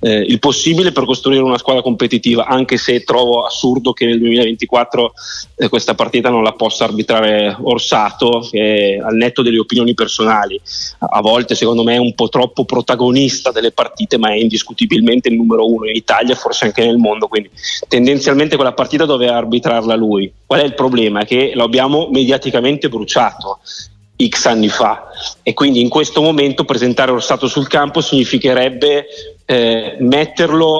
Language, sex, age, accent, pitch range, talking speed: Italian, male, 30-49, native, 115-140 Hz, 160 wpm